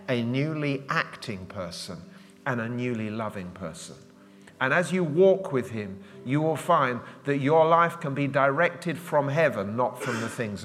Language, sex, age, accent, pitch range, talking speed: English, male, 40-59, British, 115-150 Hz, 170 wpm